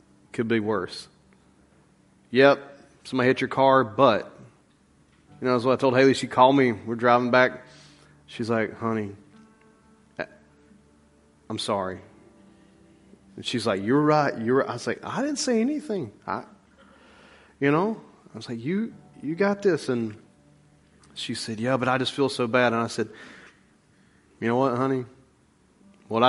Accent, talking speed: American, 155 wpm